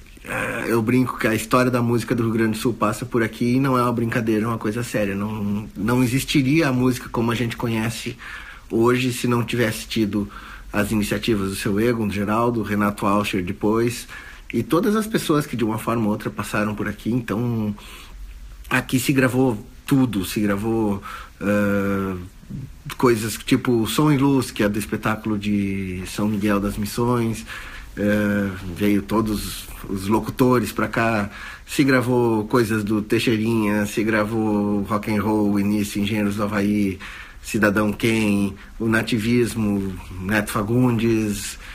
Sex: male